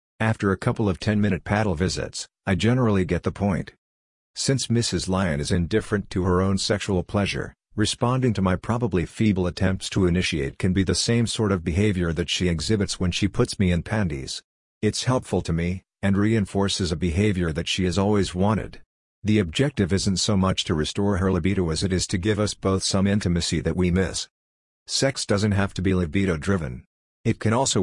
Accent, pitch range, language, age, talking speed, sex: American, 90-105 Hz, English, 50-69, 190 wpm, male